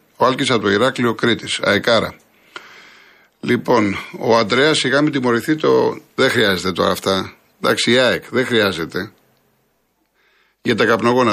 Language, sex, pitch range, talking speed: Greek, male, 115-140 Hz, 125 wpm